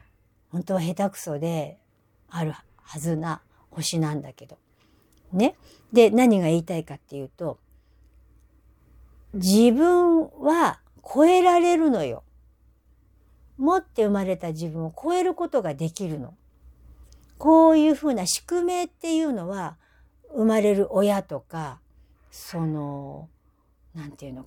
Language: Japanese